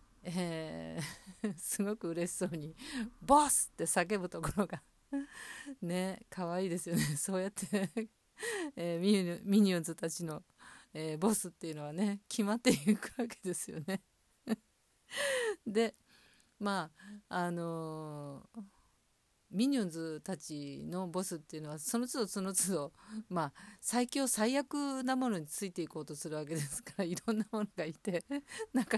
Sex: female